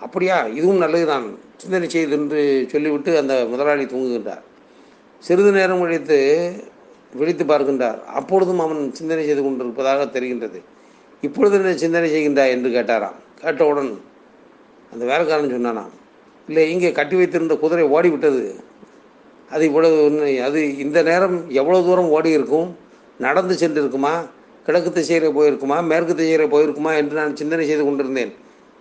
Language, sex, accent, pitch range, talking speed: Tamil, male, native, 145-170 Hz, 120 wpm